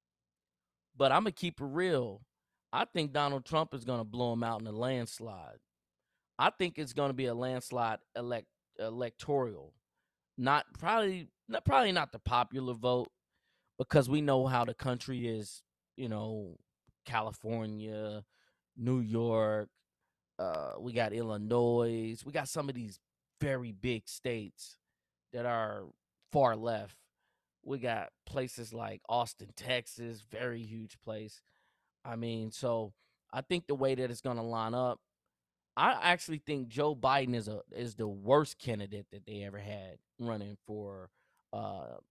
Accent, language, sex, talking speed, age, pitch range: American, English, male, 150 wpm, 20-39, 105-130 Hz